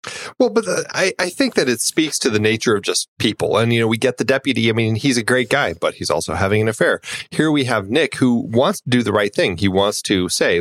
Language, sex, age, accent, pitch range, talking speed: English, male, 30-49, American, 105-140 Hz, 270 wpm